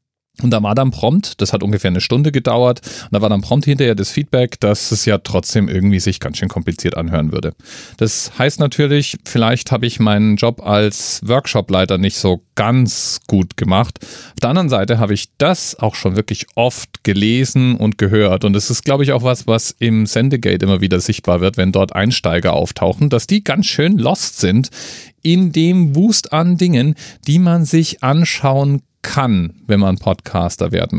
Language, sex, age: German, male, 40-59